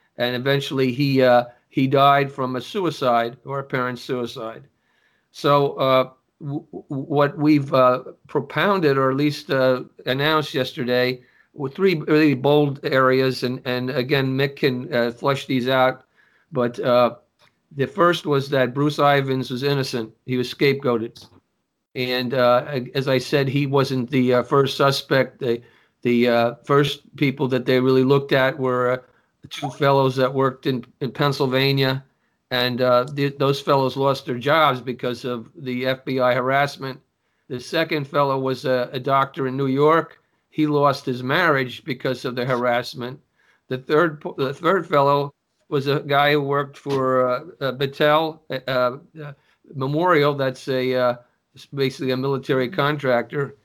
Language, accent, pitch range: English, American, 125-145 Hz